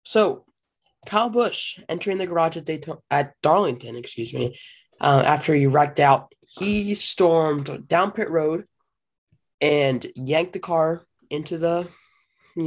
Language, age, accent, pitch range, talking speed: English, 20-39, American, 140-190 Hz, 135 wpm